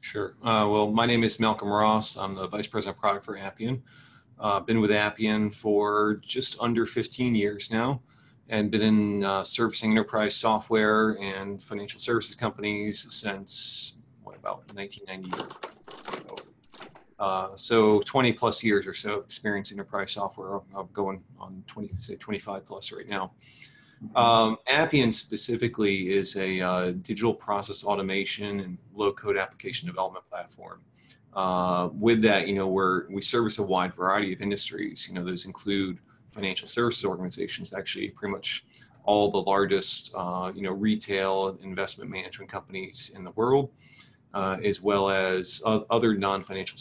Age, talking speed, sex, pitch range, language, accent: 30-49, 150 wpm, male, 95-115 Hz, English, American